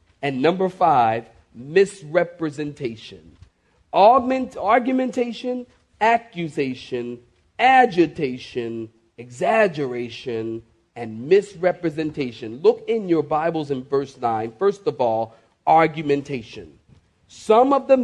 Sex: male